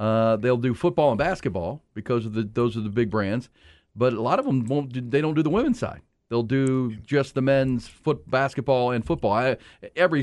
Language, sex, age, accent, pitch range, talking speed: English, male, 40-59, American, 110-140 Hz, 215 wpm